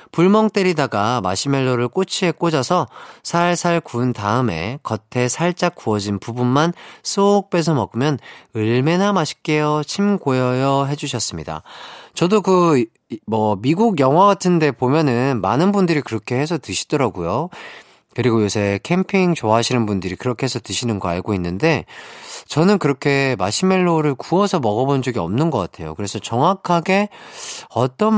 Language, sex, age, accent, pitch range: Korean, male, 40-59, native, 110-175 Hz